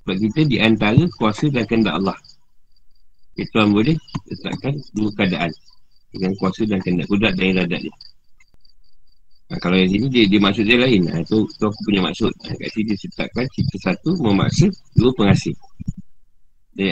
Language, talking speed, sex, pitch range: Malay, 175 wpm, male, 90-110 Hz